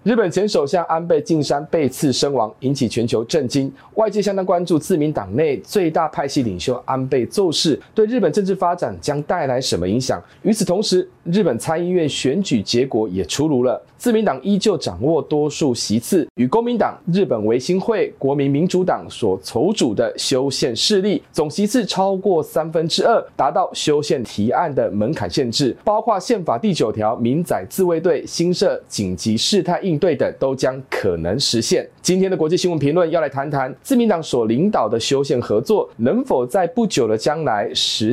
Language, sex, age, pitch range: Chinese, male, 30-49, 135-200 Hz